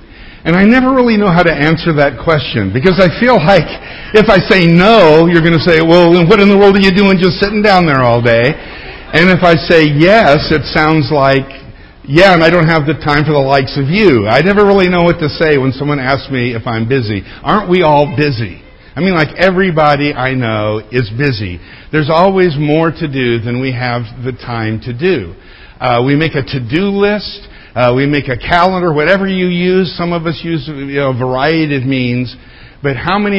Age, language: 50-69, English